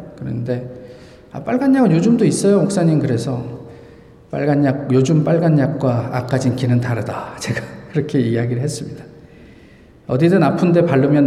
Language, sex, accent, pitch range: Korean, male, native, 125-165 Hz